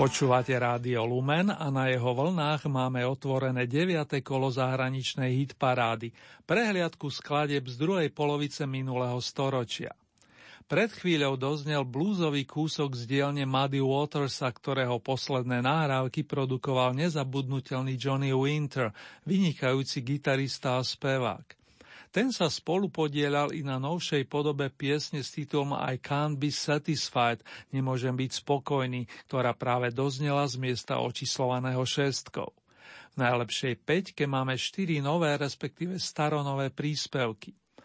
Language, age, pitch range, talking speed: Slovak, 50-69, 130-150 Hz, 115 wpm